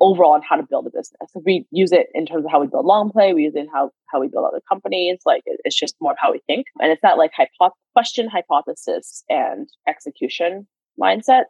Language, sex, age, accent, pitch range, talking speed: English, female, 20-39, American, 165-235 Hz, 250 wpm